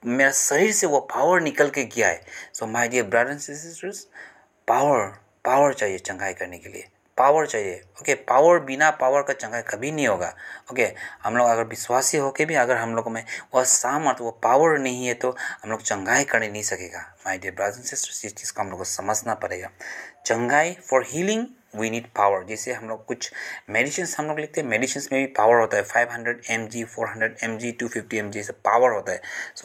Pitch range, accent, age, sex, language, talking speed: 115-170 Hz, Indian, 30-49, male, English, 200 wpm